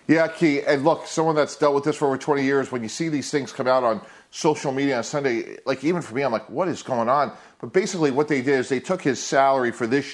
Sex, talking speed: male, 280 wpm